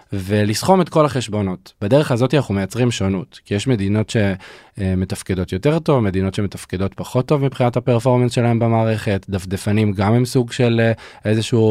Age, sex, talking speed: 20-39, male, 150 wpm